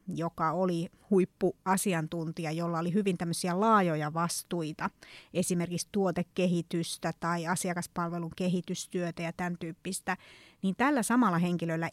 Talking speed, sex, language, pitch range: 100 wpm, female, Finnish, 170-200 Hz